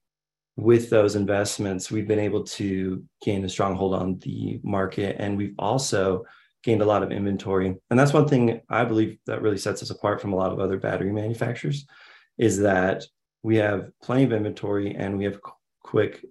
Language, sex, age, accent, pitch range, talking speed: English, male, 20-39, American, 95-115 Hz, 185 wpm